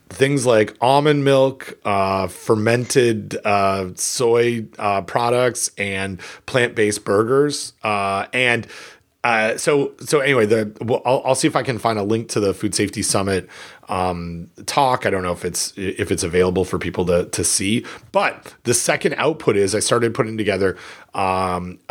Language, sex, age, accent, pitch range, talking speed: English, male, 30-49, American, 105-135 Hz, 165 wpm